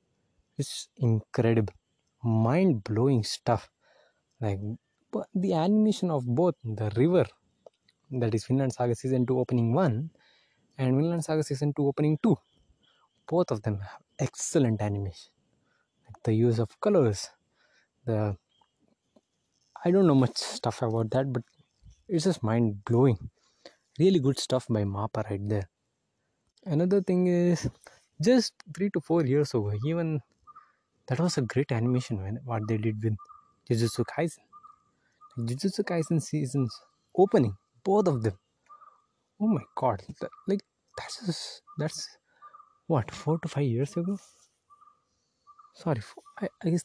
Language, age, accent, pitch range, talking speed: English, 20-39, Indian, 115-185 Hz, 135 wpm